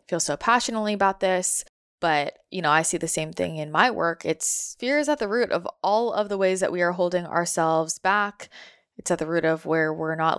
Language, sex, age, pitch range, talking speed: English, female, 20-39, 160-190 Hz, 235 wpm